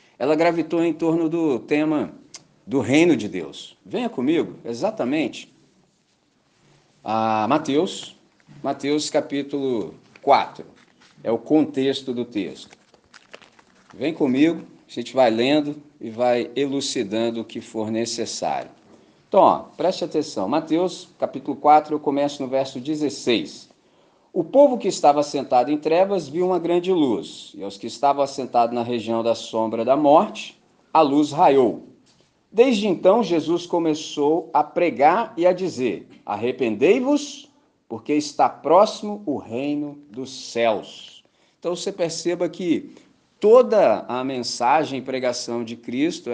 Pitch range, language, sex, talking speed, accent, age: 125-170 Hz, Portuguese, male, 130 wpm, Brazilian, 40-59